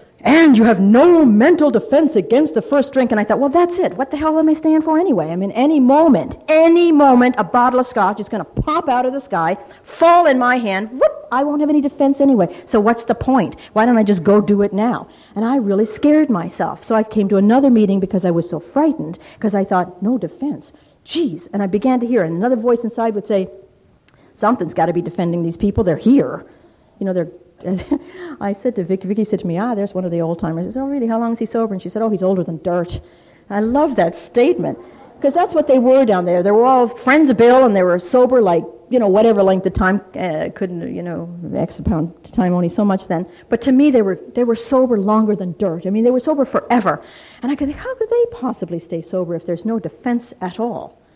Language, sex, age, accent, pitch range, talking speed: English, female, 50-69, American, 190-270 Hz, 250 wpm